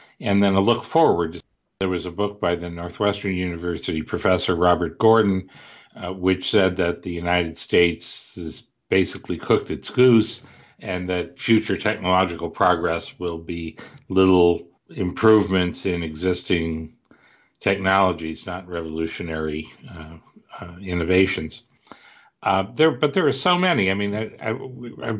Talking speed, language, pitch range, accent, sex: 135 wpm, English, 90-105 Hz, American, male